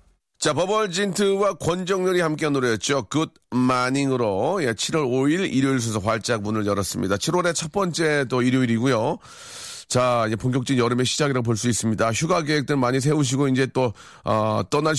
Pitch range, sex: 110-150 Hz, male